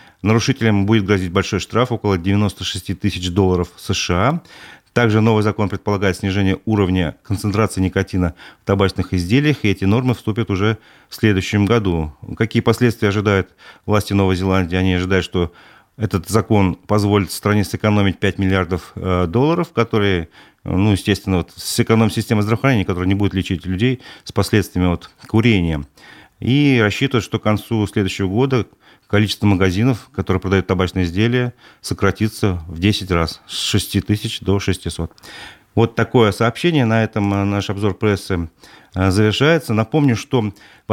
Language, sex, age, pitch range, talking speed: Russian, male, 40-59, 95-115 Hz, 140 wpm